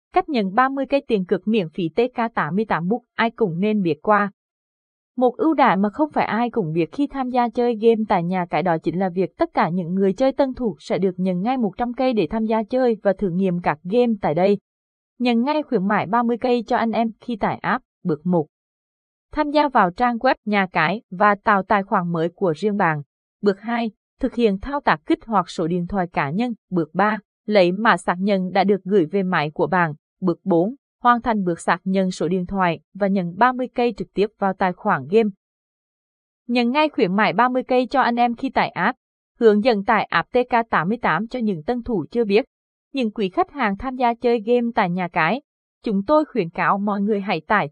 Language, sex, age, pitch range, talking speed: Vietnamese, female, 20-39, 185-240 Hz, 225 wpm